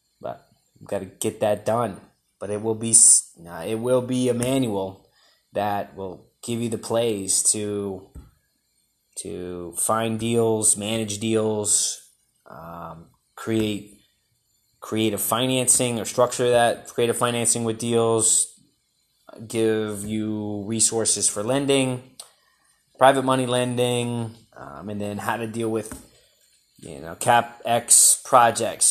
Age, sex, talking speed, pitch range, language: 20-39, male, 115 wpm, 110-125 Hz, English